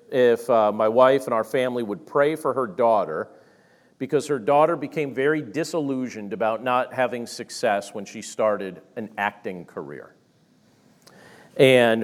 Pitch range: 120-145 Hz